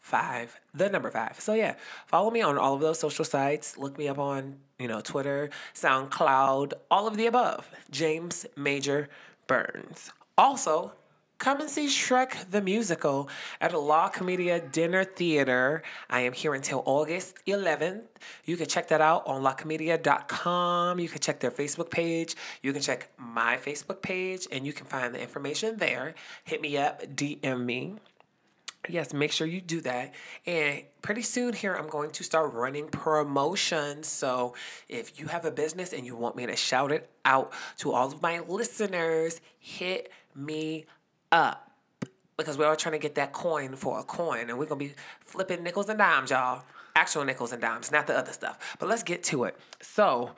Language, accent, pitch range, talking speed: English, American, 140-175 Hz, 180 wpm